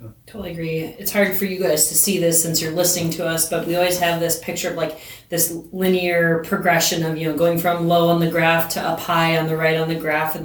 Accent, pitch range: American, 165-185 Hz